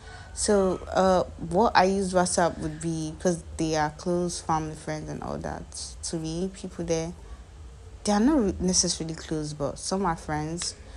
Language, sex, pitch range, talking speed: English, female, 150-185 Hz, 165 wpm